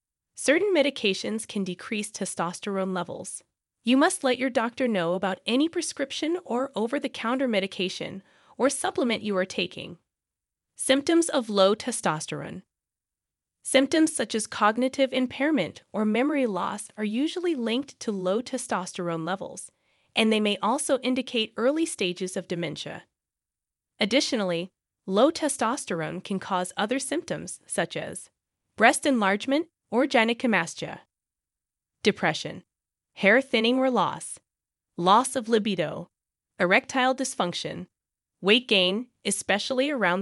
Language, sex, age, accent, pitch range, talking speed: English, female, 20-39, American, 190-265 Hz, 115 wpm